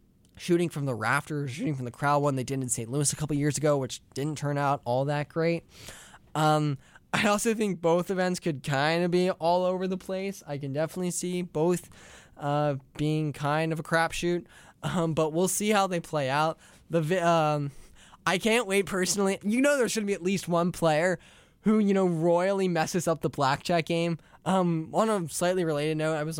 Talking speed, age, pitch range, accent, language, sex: 205 wpm, 10-29, 145-180 Hz, American, English, male